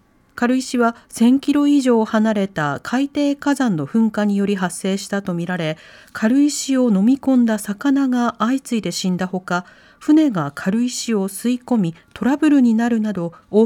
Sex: female